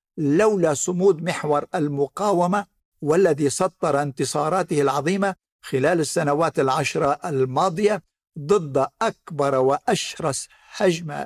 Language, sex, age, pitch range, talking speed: Arabic, male, 60-79, 145-185 Hz, 85 wpm